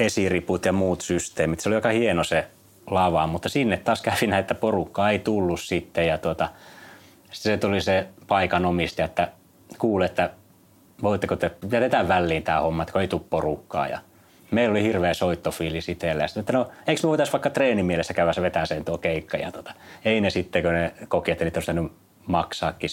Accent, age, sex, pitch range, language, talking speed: native, 30-49, male, 85-100 Hz, Finnish, 180 wpm